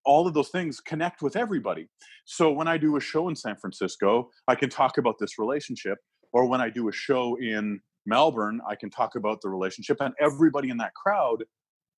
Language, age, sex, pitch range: English, 30-49, male, 110-155 Hz